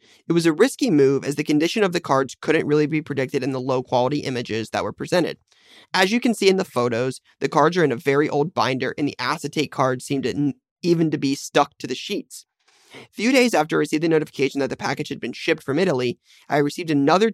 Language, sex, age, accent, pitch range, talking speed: English, male, 30-49, American, 135-165 Hz, 240 wpm